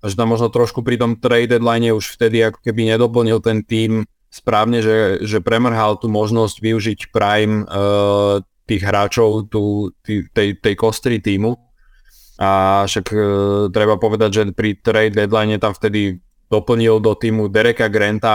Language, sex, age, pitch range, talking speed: Slovak, male, 20-39, 100-115 Hz, 155 wpm